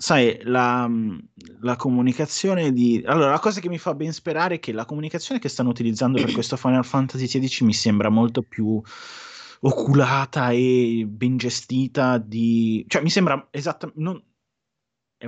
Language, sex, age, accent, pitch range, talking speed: Italian, male, 20-39, native, 105-125 Hz, 155 wpm